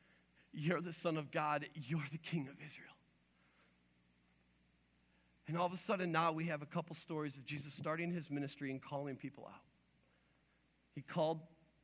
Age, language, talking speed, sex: 40-59, English, 160 wpm, male